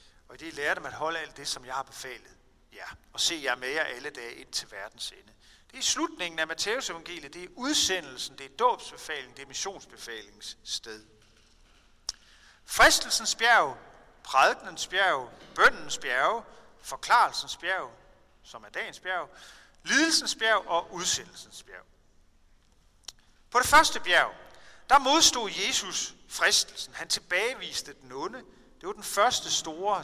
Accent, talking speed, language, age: native, 145 wpm, Danish, 40-59